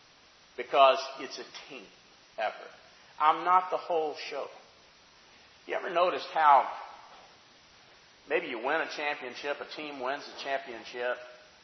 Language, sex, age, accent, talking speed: English, male, 40-59, American, 125 wpm